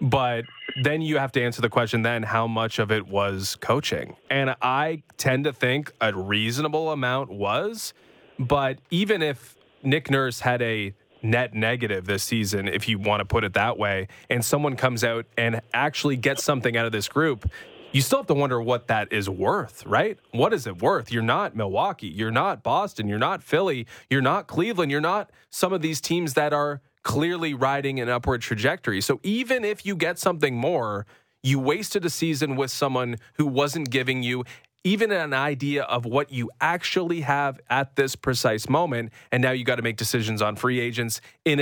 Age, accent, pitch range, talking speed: 20-39, American, 110-145 Hz, 195 wpm